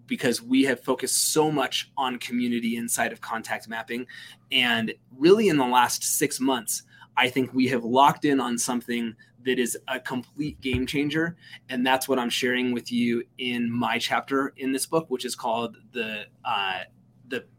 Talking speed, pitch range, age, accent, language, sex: 175 wpm, 125-155 Hz, 20-39, American, English, male